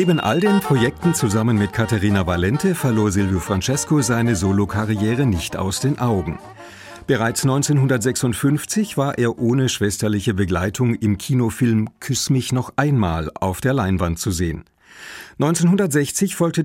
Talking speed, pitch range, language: 135 wpm, 100-145 Hz, German